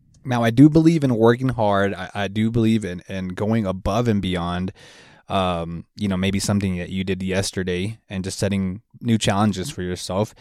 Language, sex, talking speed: English, male, 190 wpm